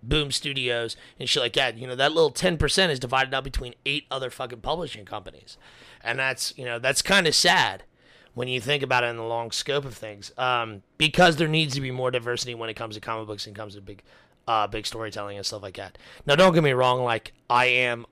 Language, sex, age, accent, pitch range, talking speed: English, male, 30-49, American, 115-135 Hz, 240 wpm